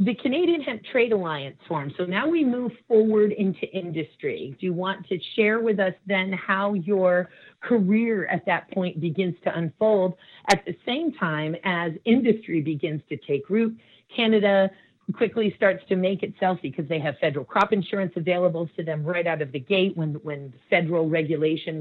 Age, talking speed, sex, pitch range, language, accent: 40-59, 175 wpm, female, 155-195 Hz, English, American